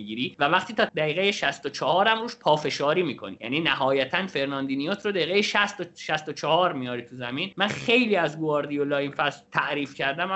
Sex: male